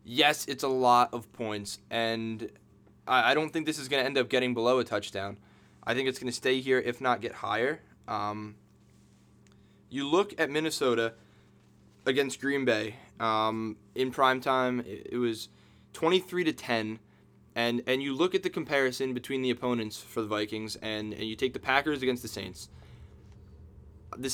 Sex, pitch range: male, 110-140 Hz